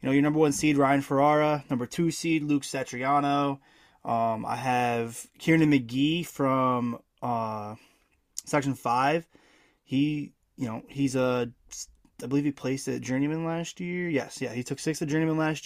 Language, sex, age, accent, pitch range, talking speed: English, male, 20-39, American, 120-145 Hz, 165 wpm